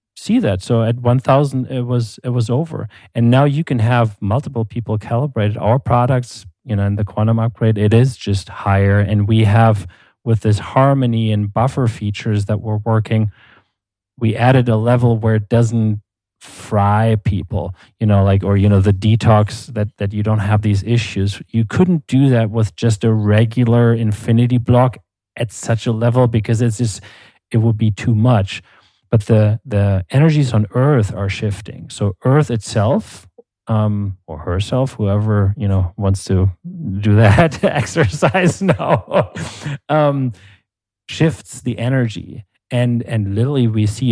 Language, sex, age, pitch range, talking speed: English, male, 30-49, 105-120 Hz, 165 wpm